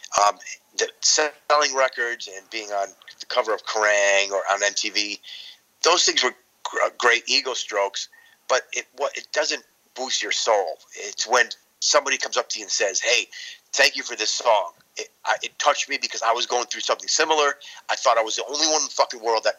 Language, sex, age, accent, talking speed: English, male, 30-49, American, 205 wpm